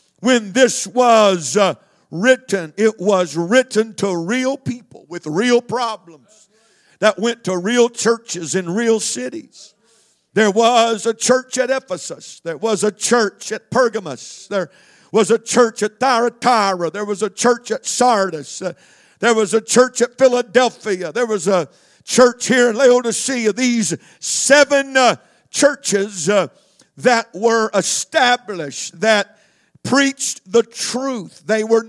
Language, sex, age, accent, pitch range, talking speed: English, male, 50-69, American, 200-245 Hz, 140 wpm